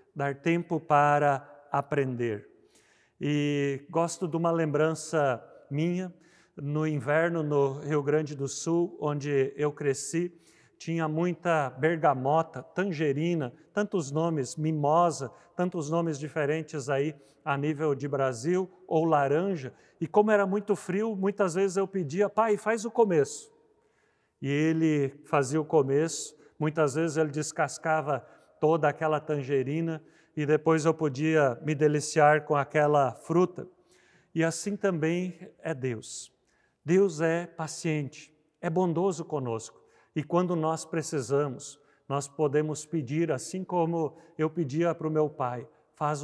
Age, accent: 50-69, Brazilian